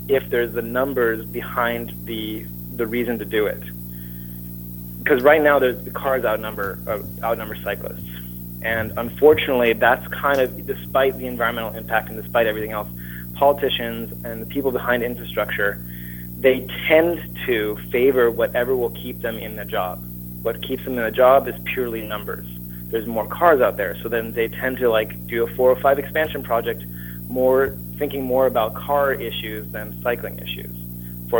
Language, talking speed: English, 165 wpm